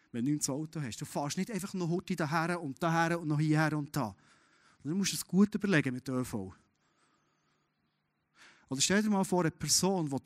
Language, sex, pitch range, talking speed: German, male, 135-180 Hz, 210 wpm